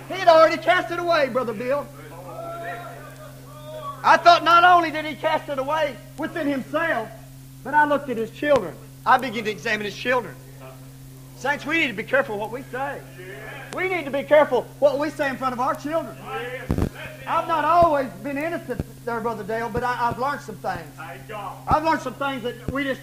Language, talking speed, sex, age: English, 190 wpm, male, 40-59